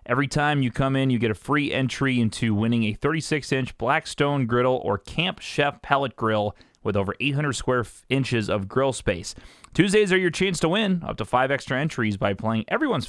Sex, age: male, 30-49